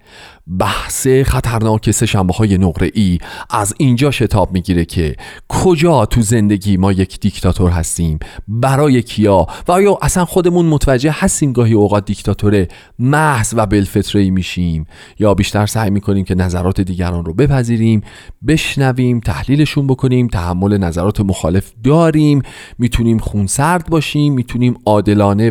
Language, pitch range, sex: Persian, 95-150 Hz, male